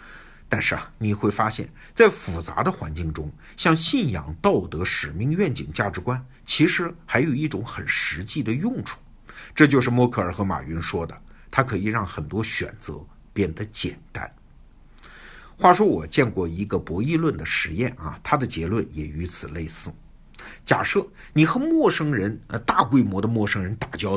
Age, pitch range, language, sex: 50-69, 95-145 Hz, Chinese, male